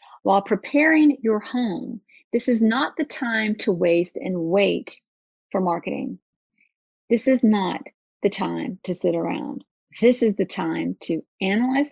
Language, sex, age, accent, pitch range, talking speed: English, female, 40-59, American, 190-255 Hz, 145 wpm